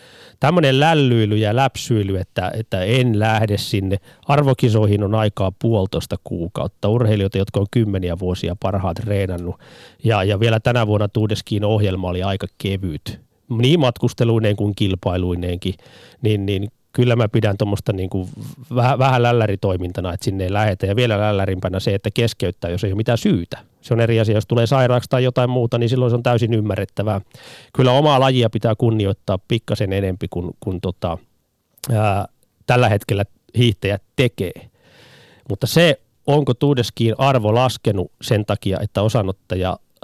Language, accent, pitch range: Finnish, native, 100-120 Hz